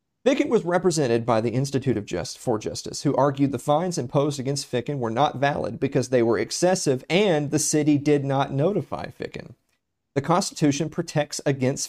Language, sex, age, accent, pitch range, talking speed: English, male, 40-59, American, 125-165 Hz, 175 wpm